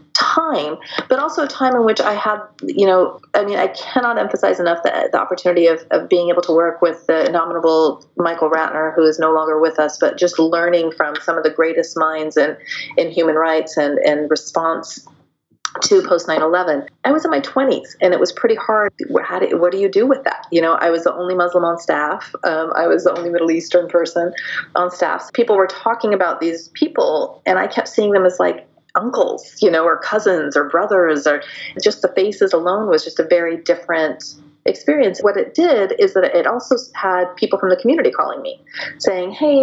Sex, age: female, 30-49